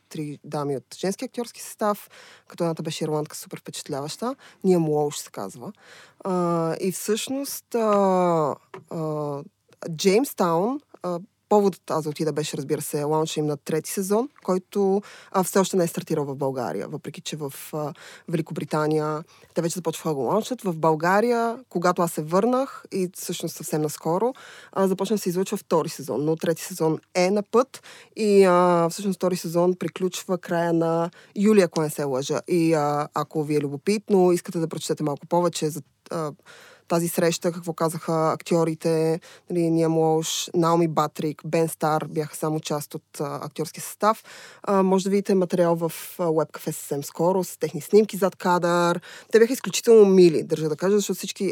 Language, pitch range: Bulgarian, 155-195 Hz